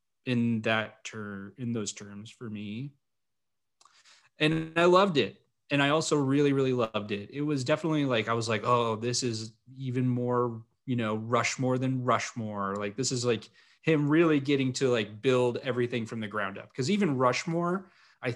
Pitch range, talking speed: 110-135 Hz, 180 wpm